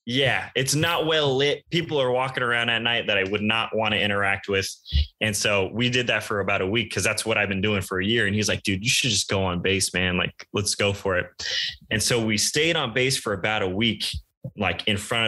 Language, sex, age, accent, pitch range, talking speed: English, male, 20-39, American, 100-125 Hz, 260 wpm